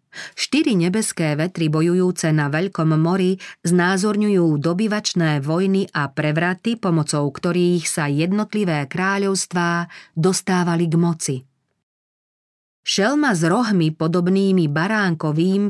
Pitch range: 160-190 Hz